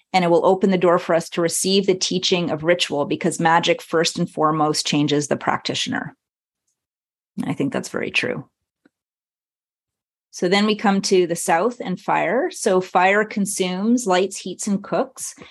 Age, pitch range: 30-49, 155-185 Hz